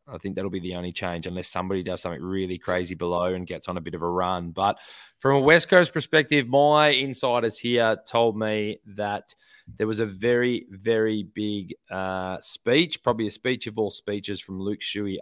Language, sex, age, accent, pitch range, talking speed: English, male, 20-39, Australian, 95-115 Hz, 200 wpm